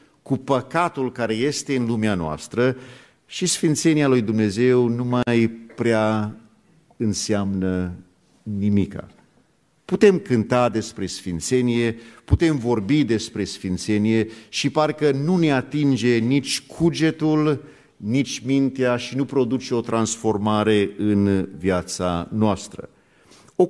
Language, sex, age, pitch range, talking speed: Romanian, male, 50-69, 105-140 Hz, 105 wpm